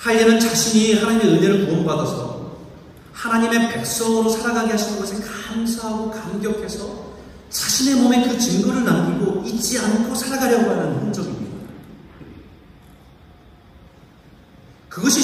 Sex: male